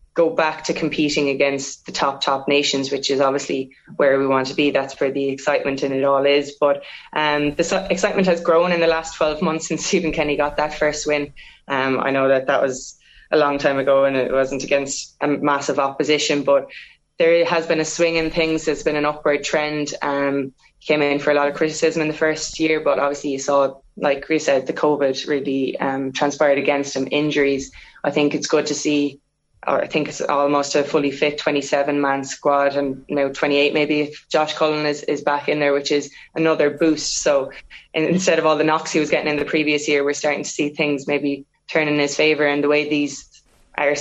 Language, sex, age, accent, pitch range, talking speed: English, female, 20-39, Irish, 140-155 Hz, 220 wpm